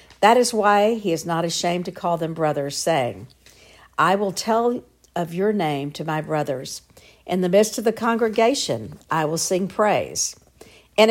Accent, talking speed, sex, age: American, 175 wpm, female, 60-79